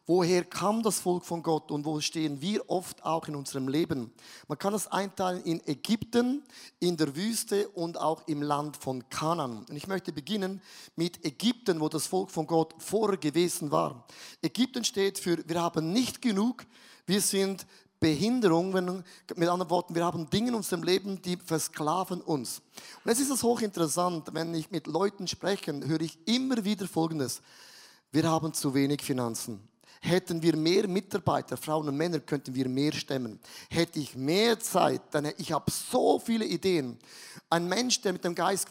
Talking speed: 175 wpm